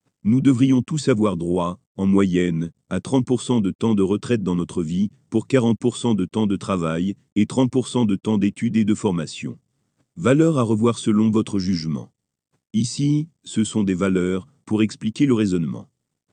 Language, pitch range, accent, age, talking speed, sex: French, 100-125 Hz, French, 40-59, 165 wpm, male